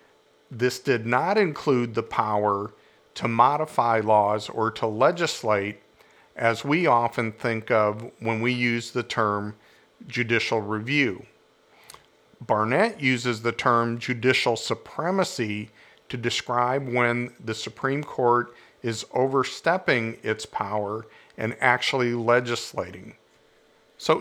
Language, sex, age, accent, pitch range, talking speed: English, male, 50-69, American, 115-135 Hz, 110 wpm